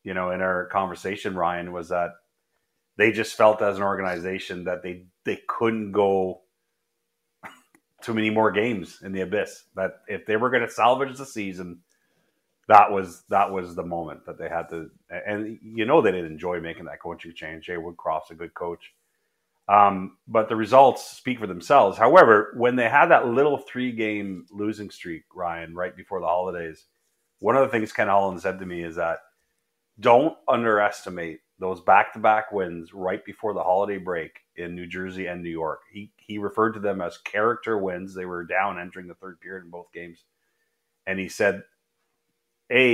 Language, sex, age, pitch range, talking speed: English, male, 30-49, 90-110 Hz, 180 wpm